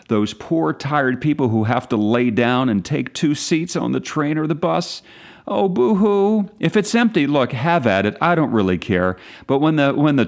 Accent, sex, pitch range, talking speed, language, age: American, male, 120-180 Hz, 215 wpm, English, 40-59